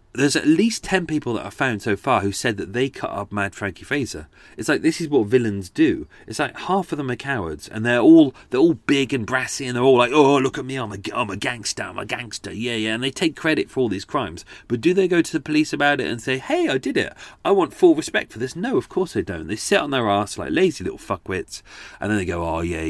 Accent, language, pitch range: British, English, 95-150 Hz